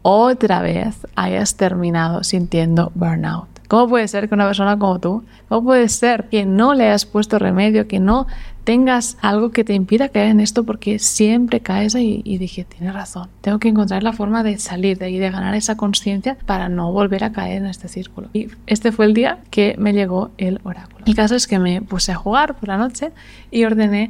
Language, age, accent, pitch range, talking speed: Spanish, 20-39, Spanish, 190-225 Hz, 210 wpm